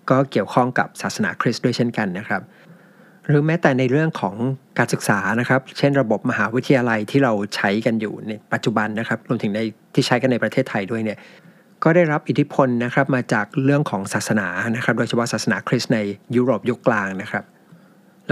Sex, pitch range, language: male, 110-135 Hz, Thai